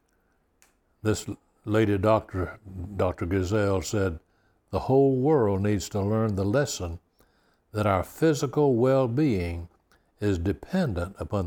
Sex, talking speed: male, 110 wpm